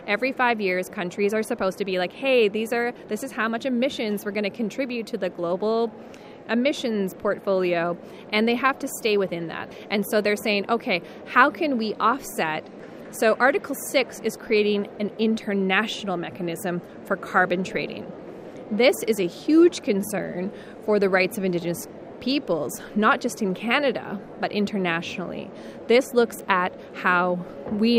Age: 20-39